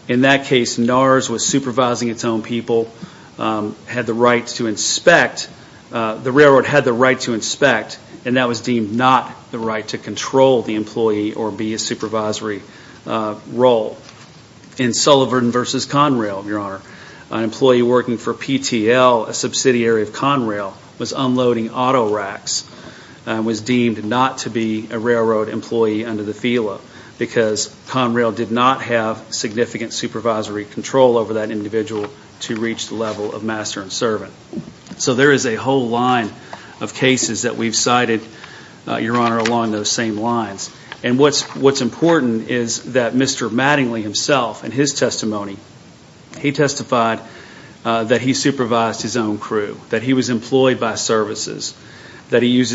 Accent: American